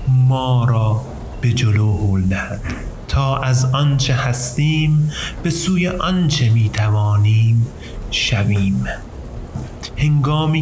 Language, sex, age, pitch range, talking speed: Persian, male, 30-49, 105-130 Hz, 90 wpm